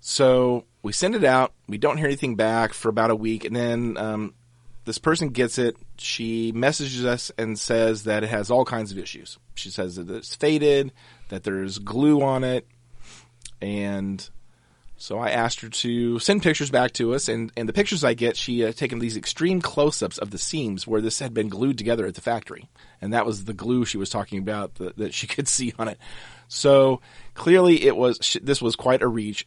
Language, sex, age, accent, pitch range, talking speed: English, male, 30-49, American, 110-130 Hz, 210 wpm